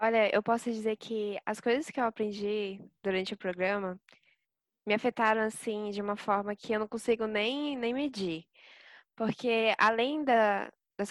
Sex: female